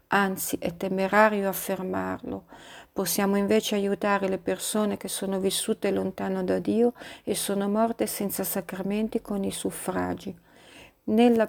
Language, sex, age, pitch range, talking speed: Italian, female, 50-69, 190-210 Hz, 125 wpm